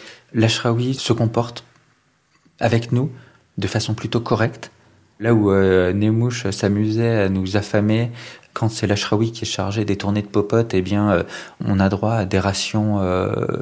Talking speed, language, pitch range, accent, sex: 170 wpm, French, 100-120 Hz, French, male